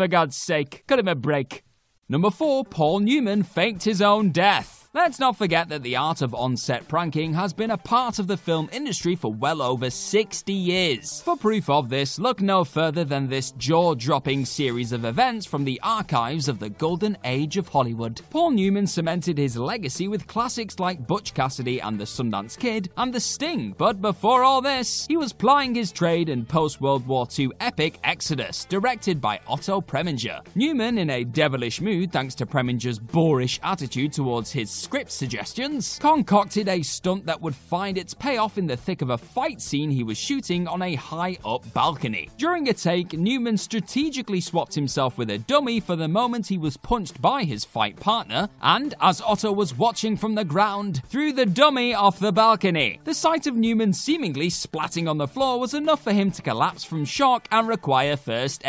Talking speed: 190 wpm